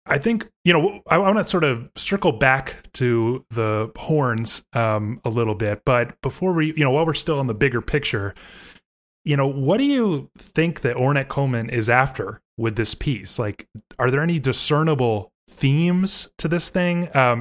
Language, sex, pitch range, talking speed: English, male, 115-155 Hz, 185 wpm